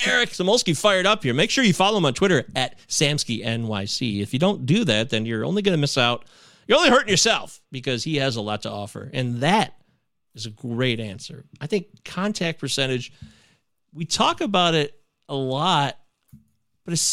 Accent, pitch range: American, 125-190 Hz